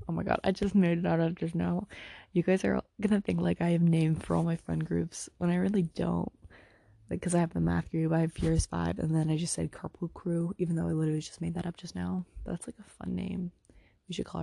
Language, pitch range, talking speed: English, 150-180 Hz, 270 wpm